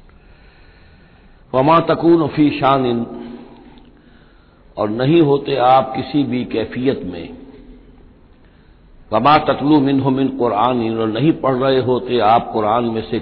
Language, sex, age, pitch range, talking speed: Hindi, male, 60-79, 100-135 Hz, 125 wpm